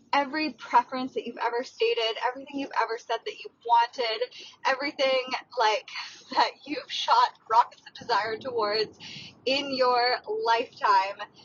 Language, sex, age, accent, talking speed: English, female, 20-39, American, 130 wpm